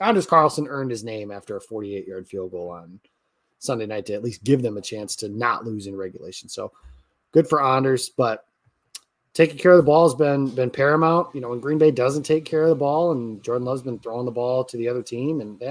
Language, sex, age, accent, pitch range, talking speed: English, male, 30-49, American, 115-150 Hz, 240 wpm